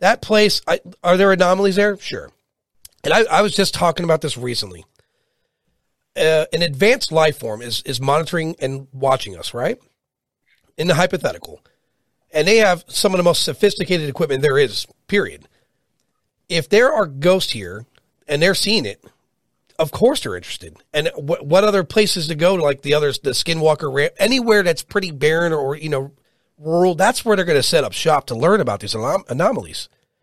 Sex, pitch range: male, 150-195 Hz